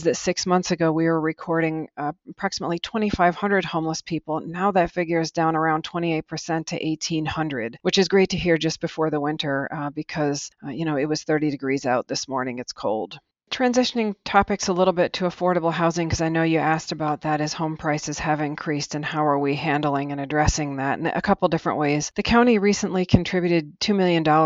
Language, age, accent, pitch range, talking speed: English, 40-59, American, 145-165 Hz, 205 wpm